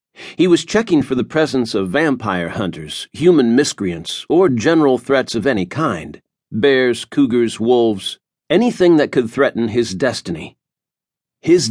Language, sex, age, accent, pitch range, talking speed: English, male, 50-69, American, 115-155 Hz, 130 wpm